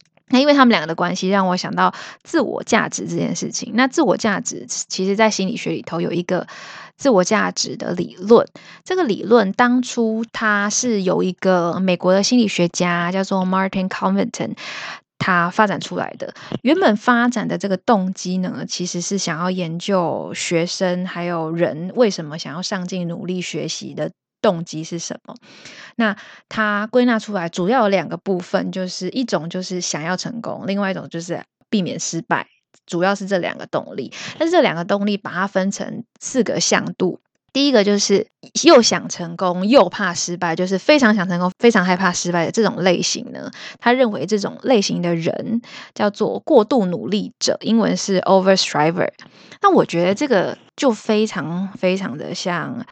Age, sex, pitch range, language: 20-39, female, 180-220 Hz, Chinese